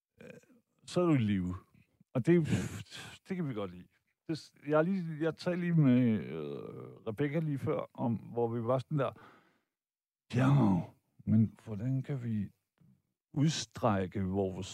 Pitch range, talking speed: 100-150 Hz, 145 wpm